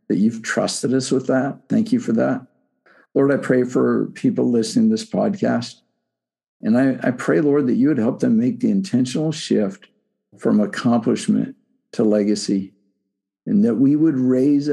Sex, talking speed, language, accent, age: male, 170 wpm, English, American, 60-79